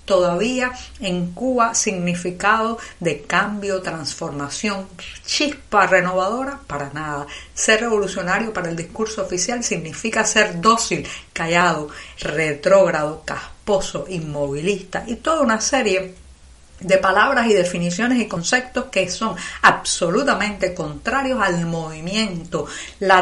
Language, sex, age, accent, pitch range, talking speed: Spanish, female, 50-69, American, 175-220 Hz, 105 wpm